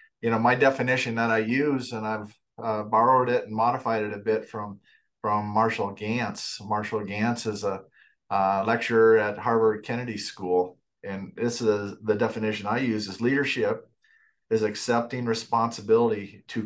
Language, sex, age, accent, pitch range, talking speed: English, male, 40-59, American, 105-115 Hz, 160 wpm